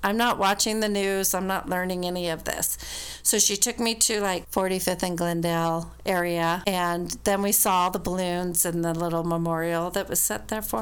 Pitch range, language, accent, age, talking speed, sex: 175-210 Hz, English, American, 40-59, 200 wpm, female